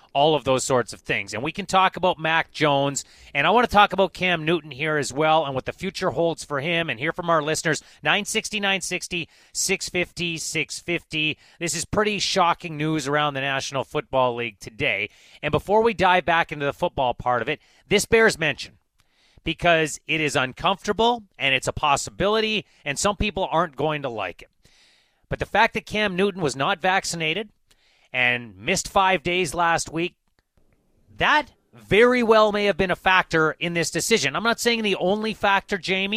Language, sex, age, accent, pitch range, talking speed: English, male, 30-49, American, 150-190 Hz, 185 wpm